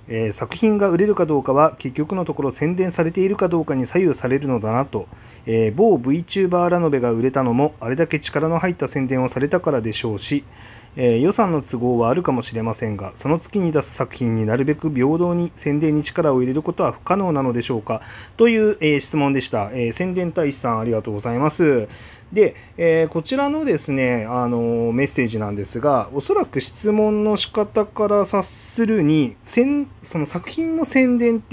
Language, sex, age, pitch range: Japanese, male, 30-49, 120-185 Hz